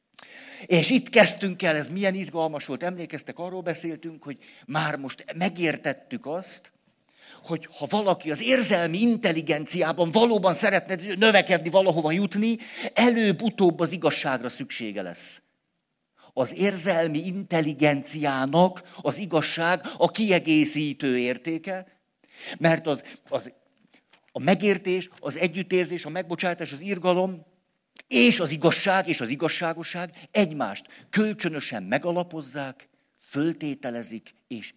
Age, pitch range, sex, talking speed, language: 50-69, 145-190 Hz, male, 105 wpm, Hungarian